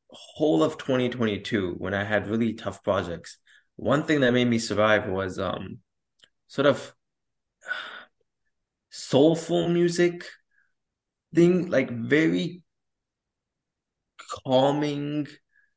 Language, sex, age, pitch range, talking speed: English, male, 20-39, 100-130 Hz, 95 wpm